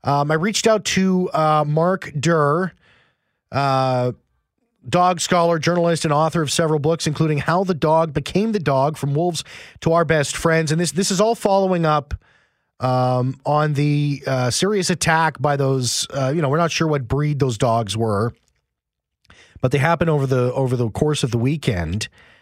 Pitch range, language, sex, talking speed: 125-160 Hz, English, male, 180 wpm